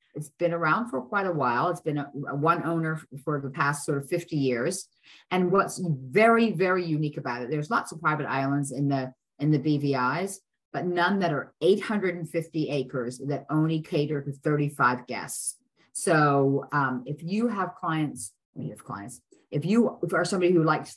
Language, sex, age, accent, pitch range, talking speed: English, female, 40-59, American, 145-175 Hz, 185 wpm